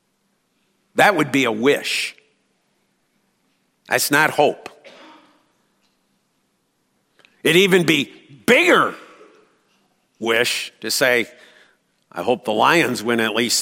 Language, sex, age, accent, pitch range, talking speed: English, male, 50-69, American, 160-225 Hz, 95 wpm